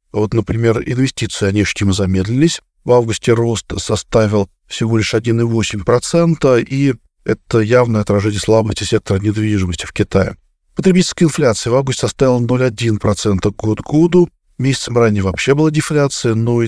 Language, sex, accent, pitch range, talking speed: Russian, male, native, 105-135 Hz, 140 wpm